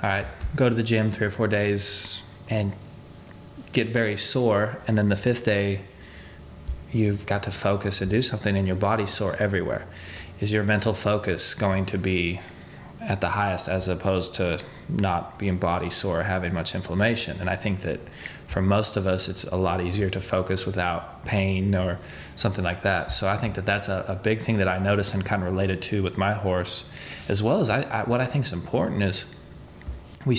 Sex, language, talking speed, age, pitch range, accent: male, English, 200 wpm, 20-39, 90-105 Hz, American